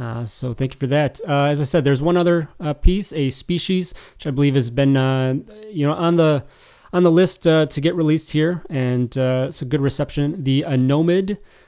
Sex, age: male, 30-49